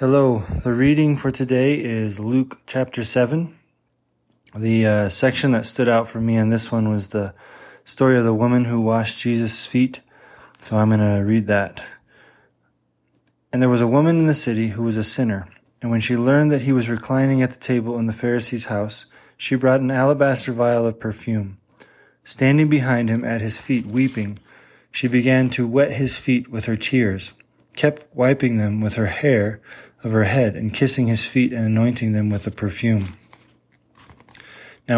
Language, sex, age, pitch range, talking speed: English, male, 20-39, 110-130 Hz, 180 wpm